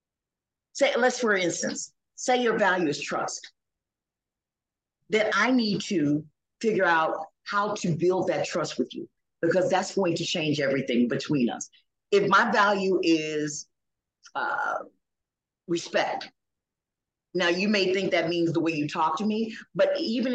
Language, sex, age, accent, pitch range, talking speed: English, female, 40-59, American, 155-205 Hz, 145 wpm